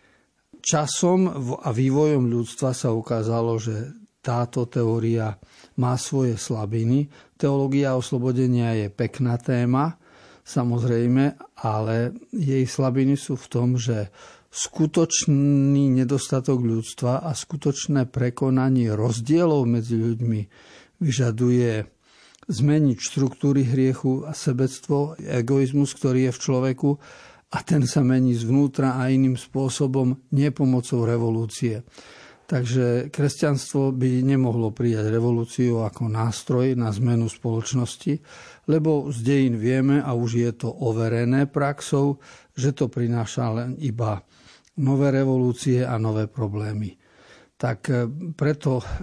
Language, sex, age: Slovak, male, 50-69